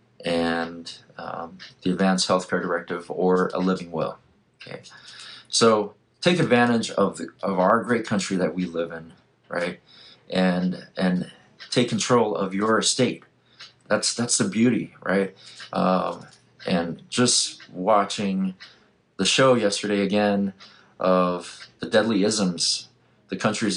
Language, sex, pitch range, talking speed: English, male, 90-105 Hz, 130 wpm